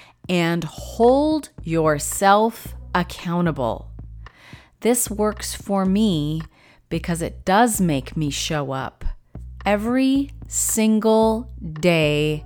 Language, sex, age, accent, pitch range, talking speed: English, female, 30-49, American, 160-215 Hz, 85 wpm